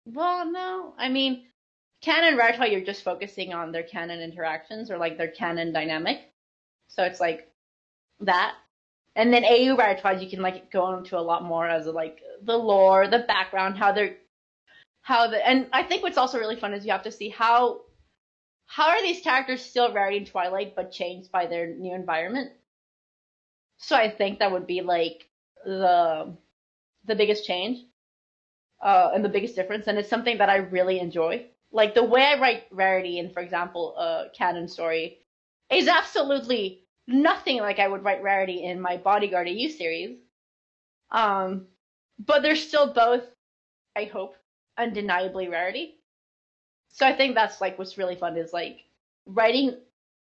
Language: English